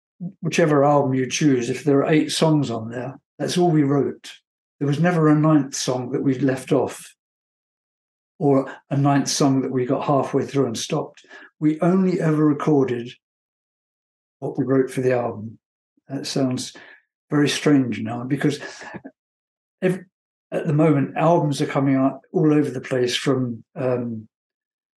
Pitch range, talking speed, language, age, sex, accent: 130-155 Hz, 155 wpm, English, 60-79, male, British